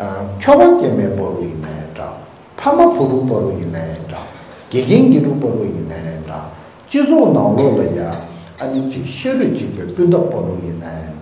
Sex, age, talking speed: male, 60-79, 75 wpm